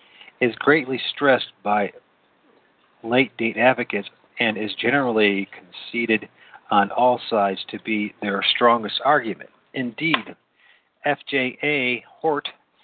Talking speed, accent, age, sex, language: 100 wpm, American, 50-69, male, English